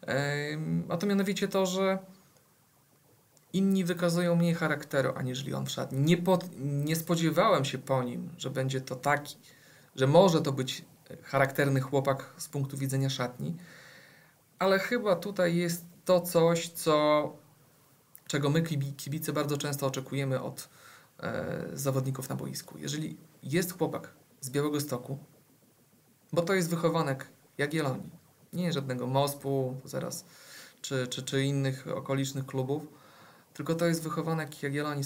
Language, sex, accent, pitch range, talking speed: Polish, male, native, 135-170 Hz, 140 wpm